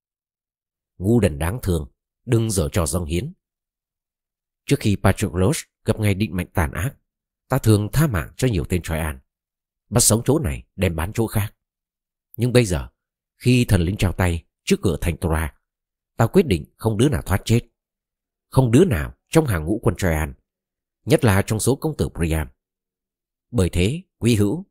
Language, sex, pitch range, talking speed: Vietnamese, male, 85-115 Hz, 180 wpm